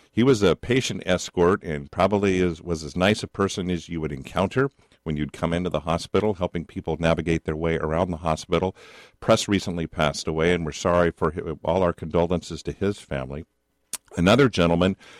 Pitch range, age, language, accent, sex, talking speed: 75-90 Hz, 50-69, English, American, male, 180 wpm